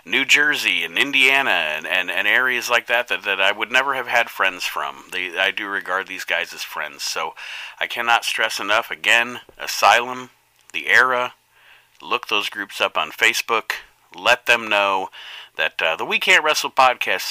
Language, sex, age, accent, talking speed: English, male, 40-59, American, 175 wpm